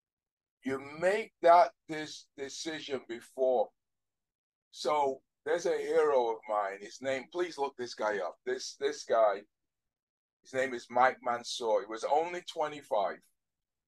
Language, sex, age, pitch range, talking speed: English, male, 50-69, 120-190 Hz, 135 wpm